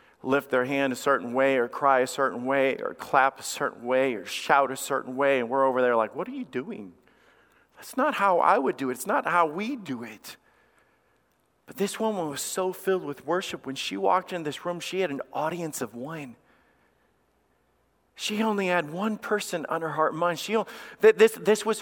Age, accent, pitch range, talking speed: 40-59, American, 140-235 Hz, 215 wpm